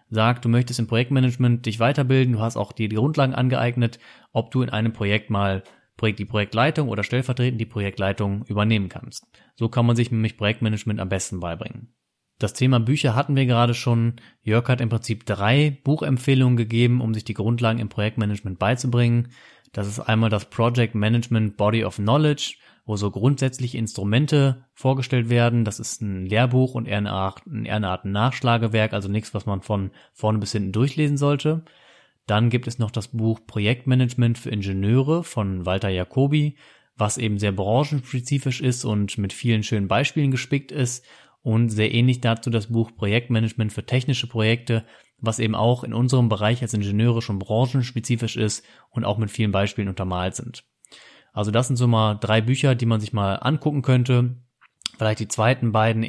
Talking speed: 170 wpm